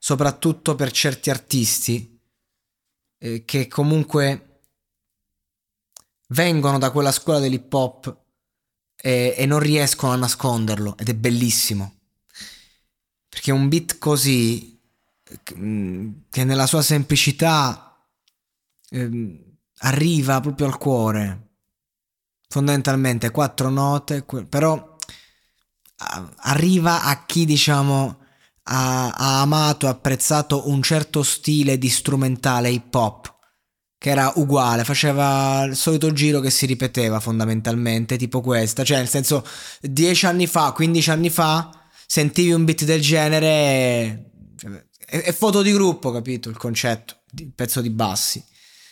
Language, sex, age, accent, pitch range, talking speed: Italian, male, 20-39, native, 115-150 Hz, 115 wpm